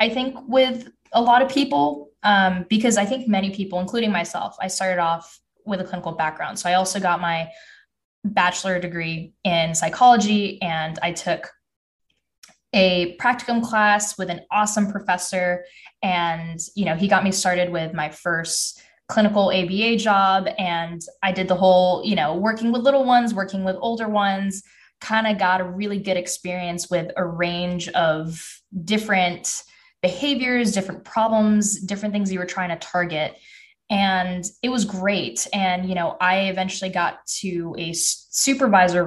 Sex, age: female, 10-29